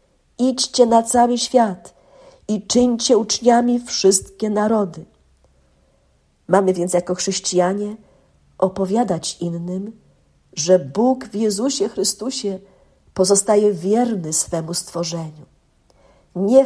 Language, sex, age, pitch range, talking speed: Polish, female, 50-69, 175-230 Hz, 90 wpm